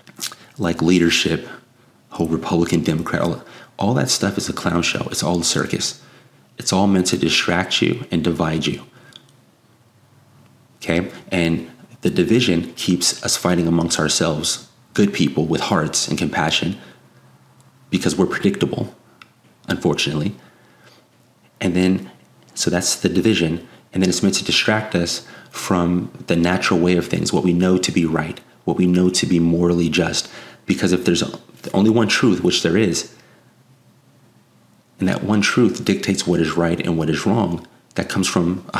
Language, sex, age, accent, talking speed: English, male, 30-49, American, 155 wpm